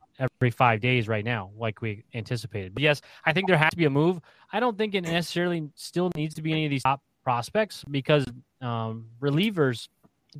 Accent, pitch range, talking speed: American, 115-140 Hz, 210 wpm